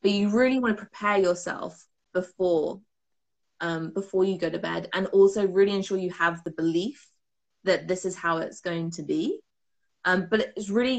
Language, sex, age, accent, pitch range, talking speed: English, female, 20-39, British, 170-205 Hz, 185 wpm